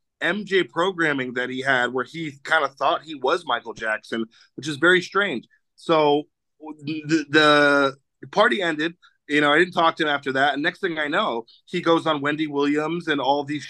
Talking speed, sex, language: 195 wpm, male, English